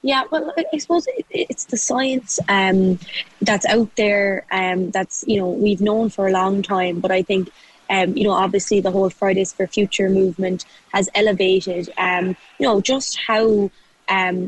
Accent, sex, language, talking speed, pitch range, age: Irish, female, English, 175 wpm, 190-215 Hz, 20-39